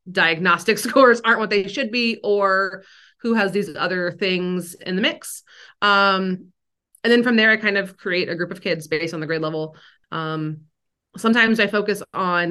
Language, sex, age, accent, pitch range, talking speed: English, female, 30-49, American, 165-195 Hz, 185 wpm